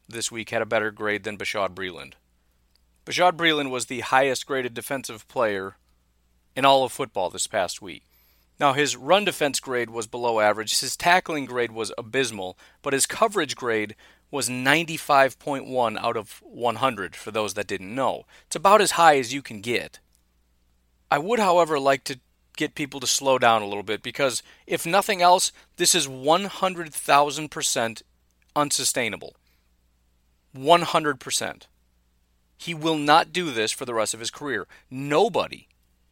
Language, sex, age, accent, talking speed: English, male, 40-59, American, 155 wpm